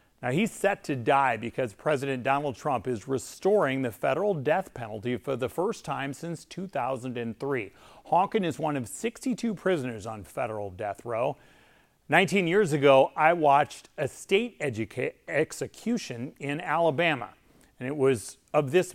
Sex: male